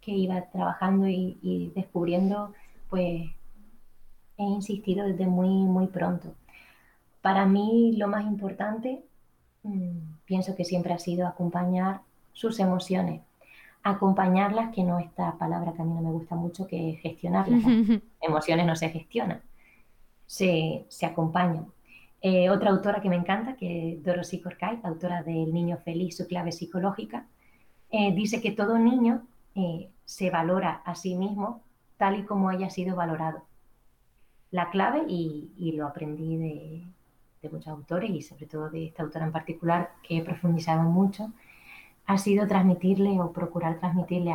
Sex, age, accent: female, 20-39, Spanish